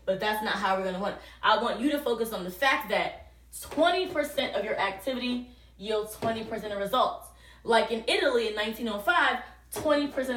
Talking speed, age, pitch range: 175 wpm, 20-39, 195-255 Hz